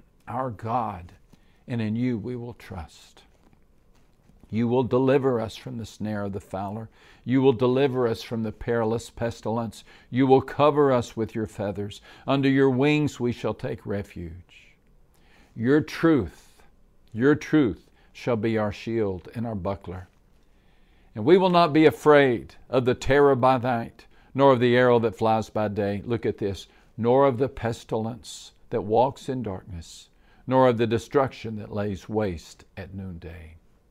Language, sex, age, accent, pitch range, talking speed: English, male, 50-69, American, 100-135 Hz, 160 wpm